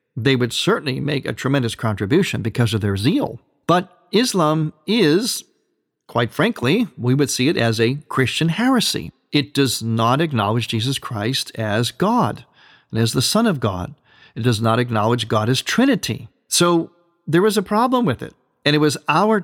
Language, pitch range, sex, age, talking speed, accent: English, 115-155 Hz, male, 50-69, 175 wpm, American